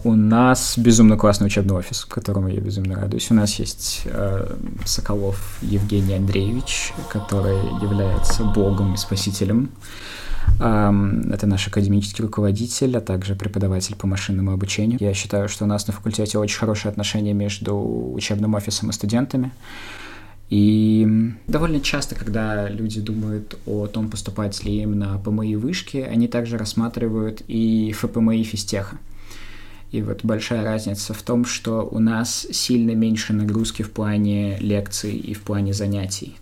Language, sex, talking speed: Russian, male, 145 wpm